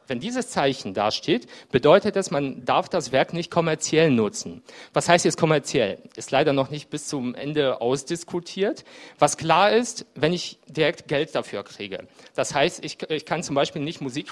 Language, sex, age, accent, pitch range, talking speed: German, male, 40-59, German, 135-170 Hz, 185 wpm